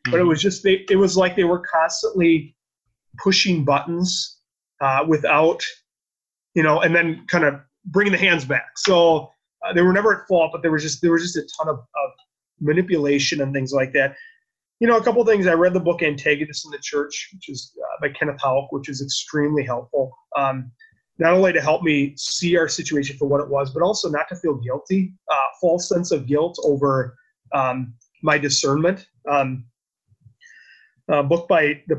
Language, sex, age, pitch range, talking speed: English, male, 30-49, 140-175 Hz, 200 wpm